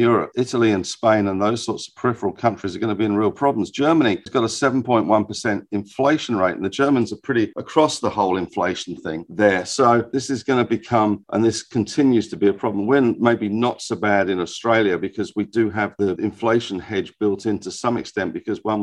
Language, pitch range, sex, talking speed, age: English, 100-115 Hz, male, 220 wpm, 50-69